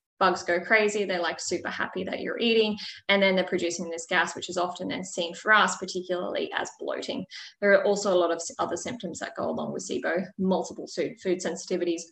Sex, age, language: female, 20-39, English